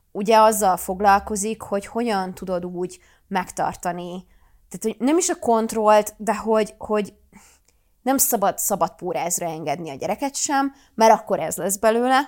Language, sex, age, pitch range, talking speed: Hungarian, female, 20-39, 185-230 Hz, 140 wpm